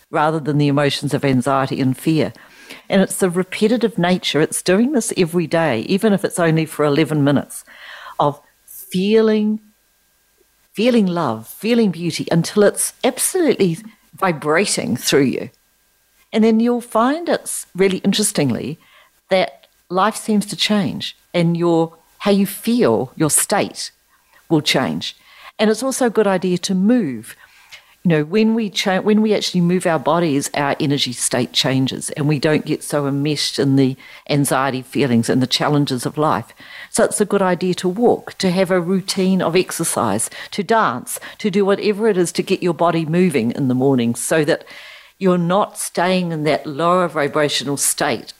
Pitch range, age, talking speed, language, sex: 145-205 Hz, 50-69, 165 wpm, English, female